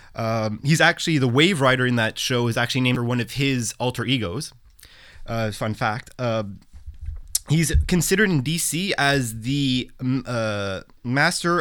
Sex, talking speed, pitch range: male, 160 wpm, 120-155 Hz